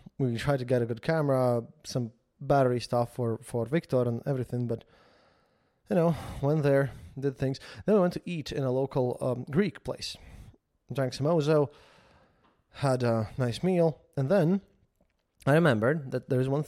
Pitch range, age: 125-160 Hz, 20-39